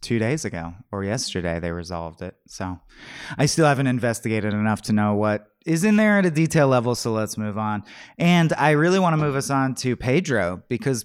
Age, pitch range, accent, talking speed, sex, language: 30-49, 105-145 Hz, American, 205 wpm, male, English